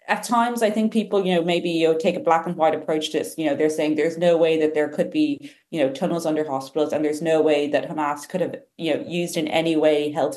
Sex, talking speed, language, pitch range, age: female, 285 wpm, English, 145-170 Hz, 30-49